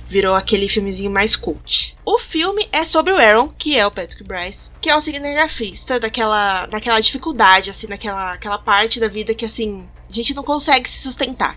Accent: Brazilian